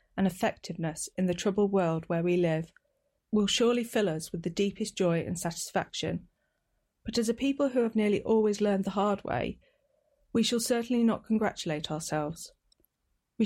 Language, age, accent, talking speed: English, 40-59, British, 170 wpm